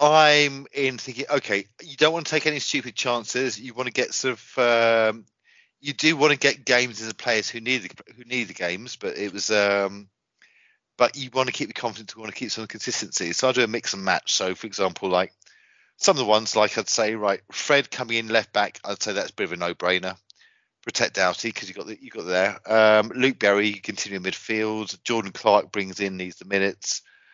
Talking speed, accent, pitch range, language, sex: 230 wpm, British, 100-130 Hz, English, male